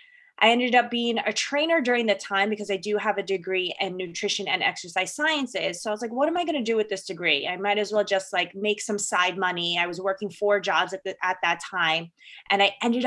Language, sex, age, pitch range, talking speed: English, female, 20-39, 185-220 Hz, 255 wpm